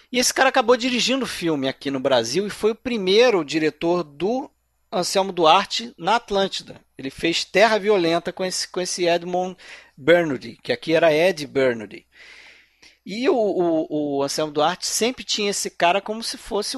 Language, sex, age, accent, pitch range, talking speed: Portuguese, male, 40-59, Brazilian, 145-215 Hz, 170 wpm